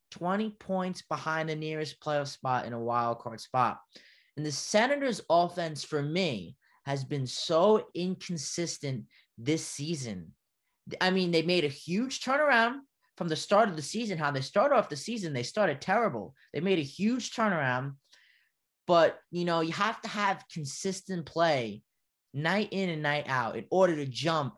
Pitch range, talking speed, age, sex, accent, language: 140-190 Hz, 170 wpm, 20-39, male, American, English